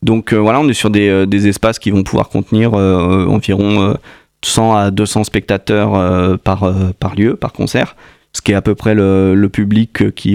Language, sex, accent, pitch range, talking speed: French, male, French, 100-115 Hz, 220 wpm